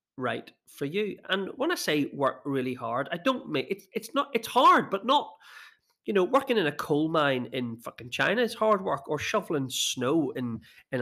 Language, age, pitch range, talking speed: English, 30-49, 135-220 Hz, 205 wpm